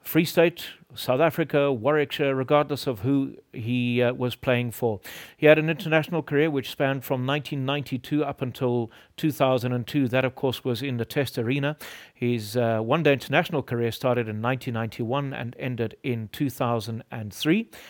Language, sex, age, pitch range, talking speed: English, male, 40-59, 115-140 Hz, 150 wpm